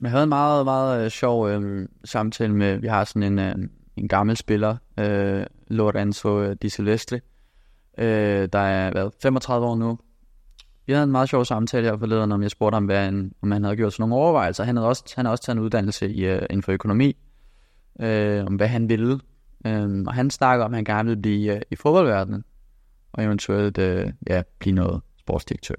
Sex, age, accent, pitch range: male, 20-39, native, 95-115 Hz